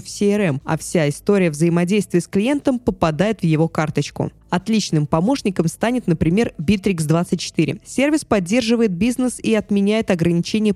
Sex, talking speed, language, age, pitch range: female, 130 wpm, Russian, 20-39, 170-215 Hz